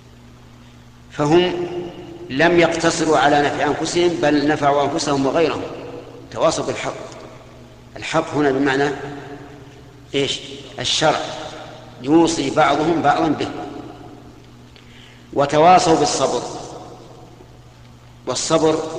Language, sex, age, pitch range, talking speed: Arabic, male, 50-69, 120-145 Hz, 75 wpm